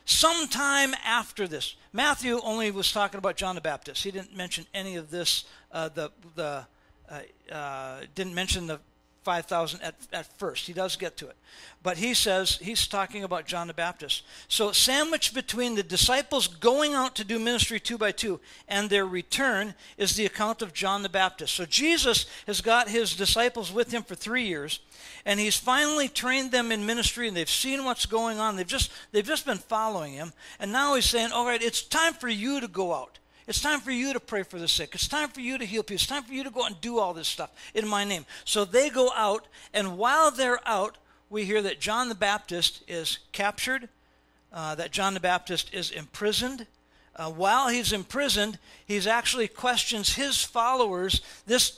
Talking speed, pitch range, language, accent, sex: 200 wpm, 180-245 Hz, English, American, male